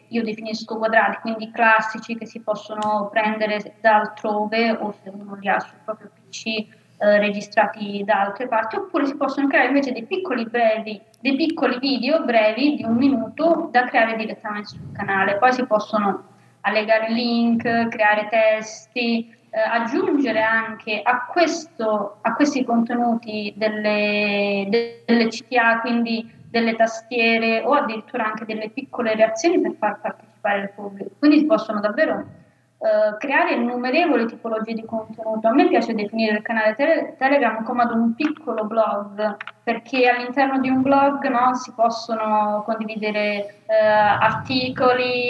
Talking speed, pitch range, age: 140 wpm, 215-245 Hz, 20-39